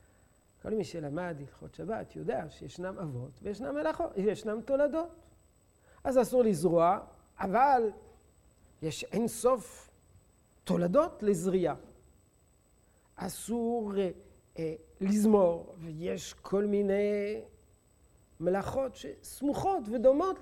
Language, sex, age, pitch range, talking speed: Hebrew, male, 50-69, 160-230 Hz, 90 wpm